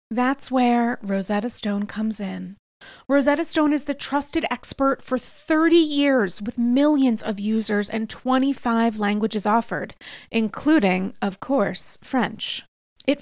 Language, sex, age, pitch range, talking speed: English, female, 30-49, 215-280 Hz, 125 wpm